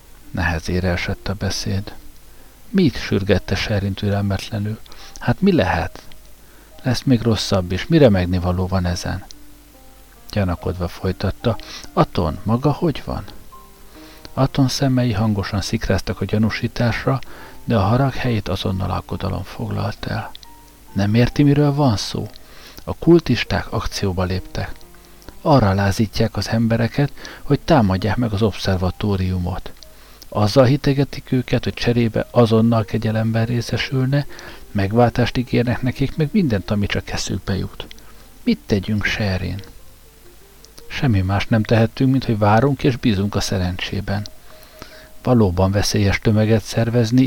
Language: Hungarian